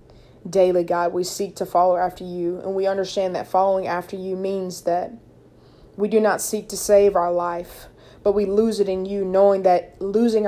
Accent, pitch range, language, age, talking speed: American, 175-195 Hz, English, 20-39, 195 wpm